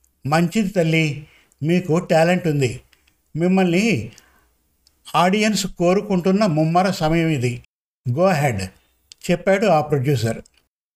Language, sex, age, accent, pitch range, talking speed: Telugu, male, 50-69, native, 150-185 Hz, 90 wpm